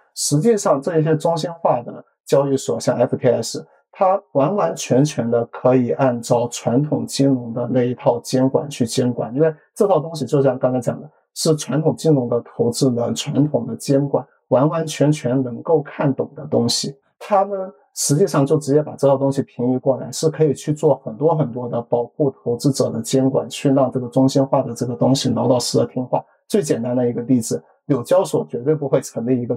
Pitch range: 125-150 Hz